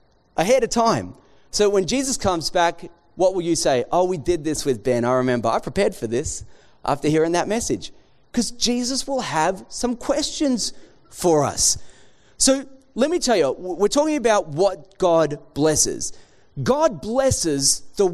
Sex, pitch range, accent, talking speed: male, 130-220 Hz, Australian, 165 wpm